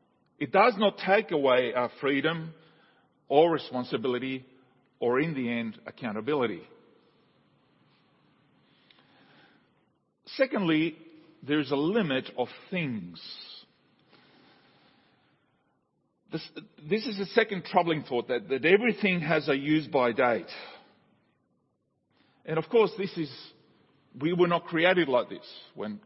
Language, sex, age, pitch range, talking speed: English, male, 50-69, 135-195 Hz, 110 wpm